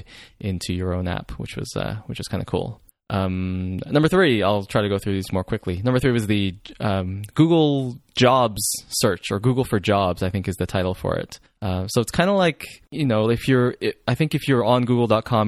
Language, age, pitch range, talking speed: English, 20-39, 95-125 Hz, 225 wpm